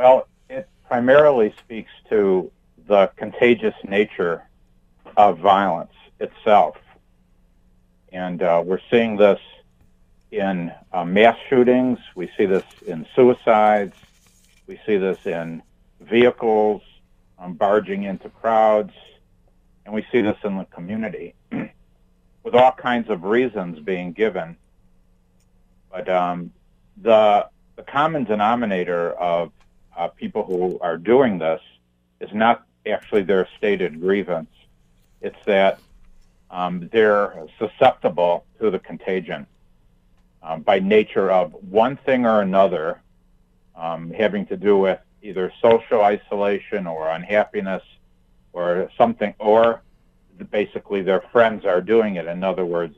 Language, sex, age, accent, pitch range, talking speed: English, male, 60-79, American, 80-110 Hz, 120 wpm